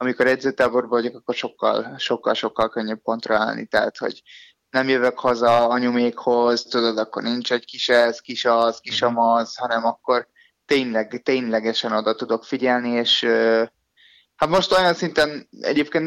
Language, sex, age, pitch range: Hungarian, male, 20-39, 120-140 Hz